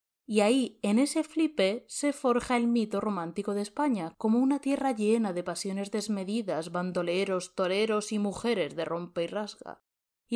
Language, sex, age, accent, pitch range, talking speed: Spanish, female, 20-39, Spanish, 185-245 Hz, 160 wpm